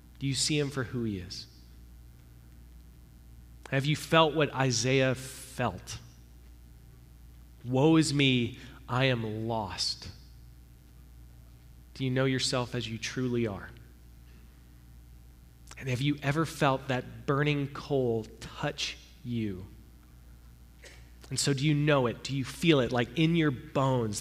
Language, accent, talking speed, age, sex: English, American, 130 wpm, 30-49, male